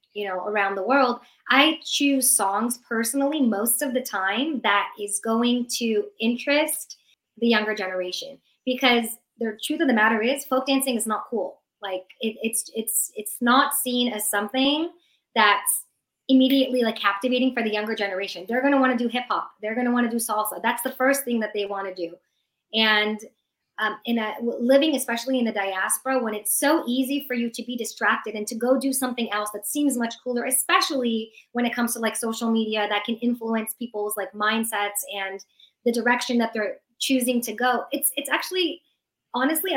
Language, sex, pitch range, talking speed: English, male, 215-265 Hz, 190 wpm